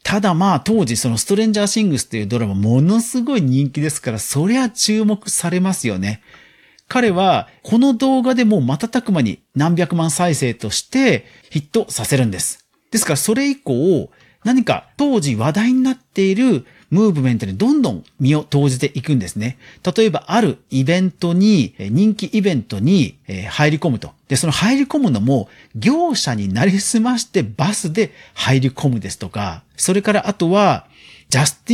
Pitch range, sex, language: 130-220 Hz, male, Japanese